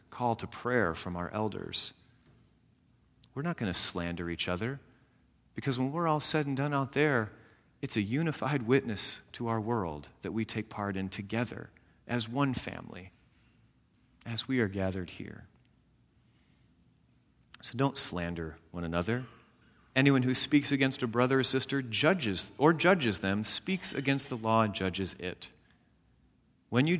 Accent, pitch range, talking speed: American, 100-130 Hz, 155 wpm